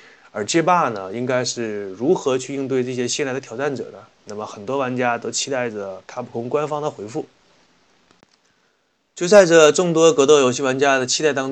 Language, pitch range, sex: Chinese, 120-150 Hz, male